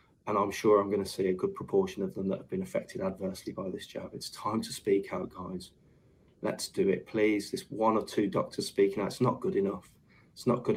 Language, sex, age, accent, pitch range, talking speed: English, male, 20-39, British, 100-110 Hz, 240 wpm